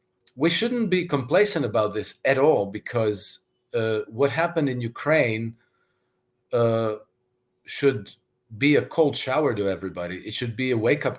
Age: 40-59